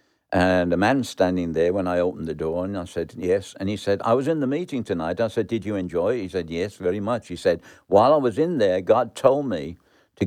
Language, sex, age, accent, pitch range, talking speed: English, male, 60-79, British, 95-130 Hz, 265 wpm